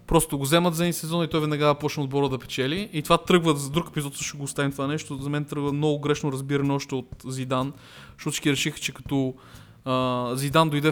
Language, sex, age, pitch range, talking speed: Bulgarian, male, 20-39, 130-150 Hz, 220 wpm